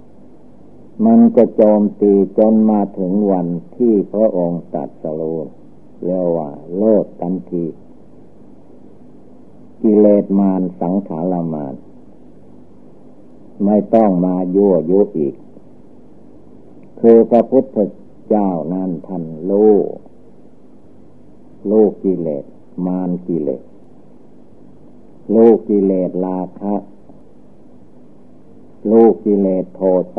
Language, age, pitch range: Thai, 60-79, 90-105 Hz